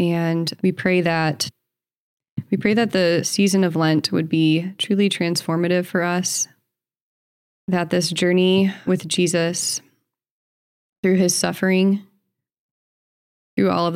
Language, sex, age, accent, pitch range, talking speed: English, female, 20-39, American, 160-185 Hz, 120 wpm